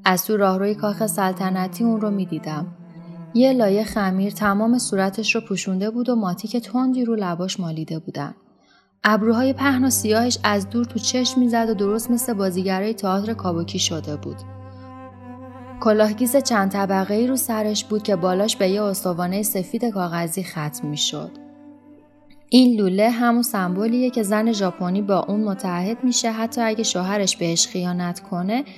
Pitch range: 180-230 Hz